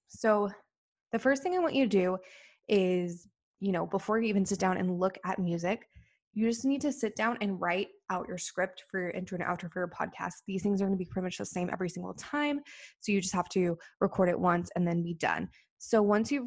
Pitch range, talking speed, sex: 180-220 Hz, 250 wpm, female